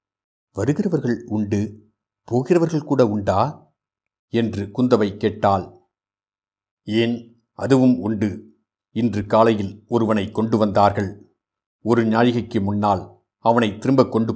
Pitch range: 100-120 Hz